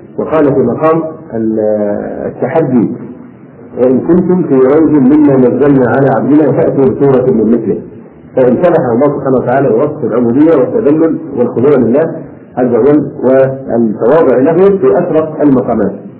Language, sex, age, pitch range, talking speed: Arabic, male, 50-69, 130-155 Hz, 115 wpm